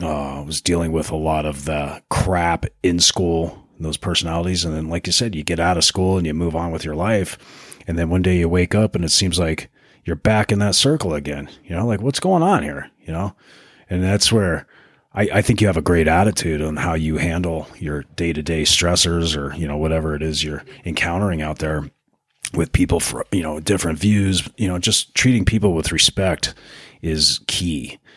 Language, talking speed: English, 215 wpm